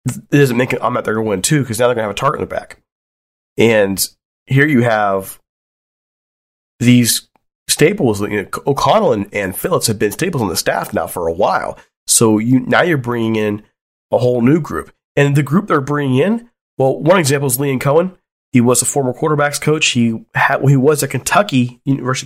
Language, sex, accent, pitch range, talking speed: English, male, American, 110-140 Hz, 215 wpm